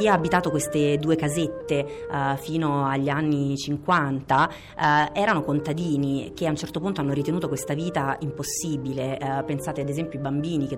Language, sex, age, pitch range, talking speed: Italian, female, 30-49, 140-170 Hz, 165 wpm